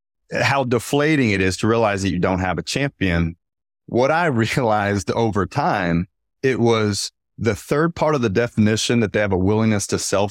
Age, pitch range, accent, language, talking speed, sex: 30-49, 95-135 Hz, American, English, 185 wpm, male